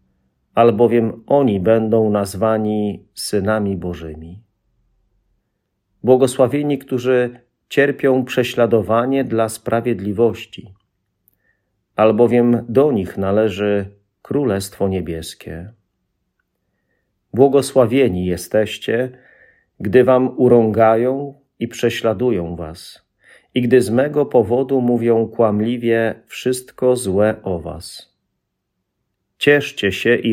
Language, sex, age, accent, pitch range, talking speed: Polish, male, 40-59, native, 95-125 Hz, 80 wpm